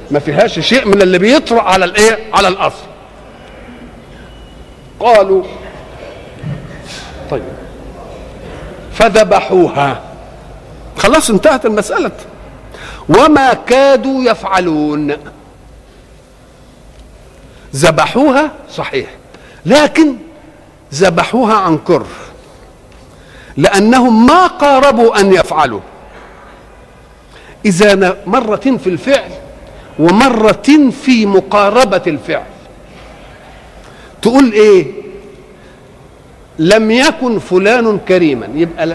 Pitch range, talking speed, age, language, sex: 180-270 Hz, 70 wpm, 50-69, Arabic, male